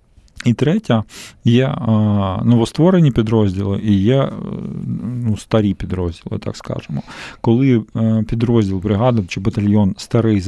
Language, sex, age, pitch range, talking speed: Ukrainian, male, 40-59, 100-120 Hz, 125 wpm